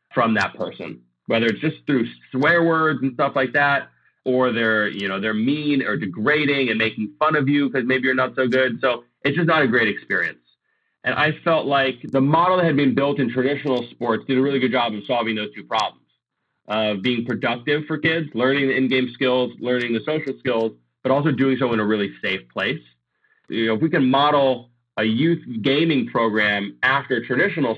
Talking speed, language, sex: 205 wpm, English, male